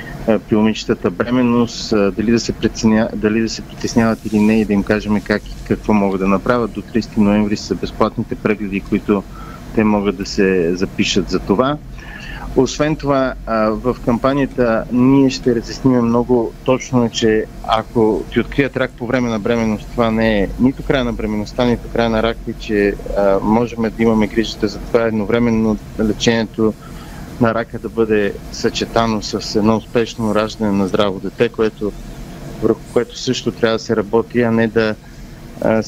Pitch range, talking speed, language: 110-125 Hz, 165 wpm, Bulgarian